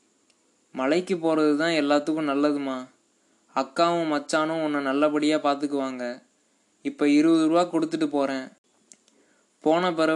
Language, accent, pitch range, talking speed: Tamil, native, 140-155 Hz, 100 wpm